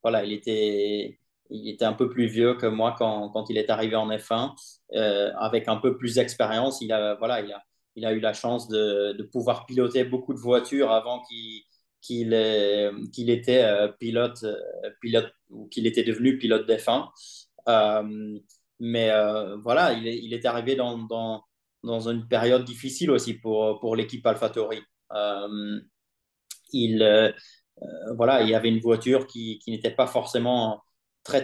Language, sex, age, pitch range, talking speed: French, male, 20-39, 110-130 Hz, 170 wpm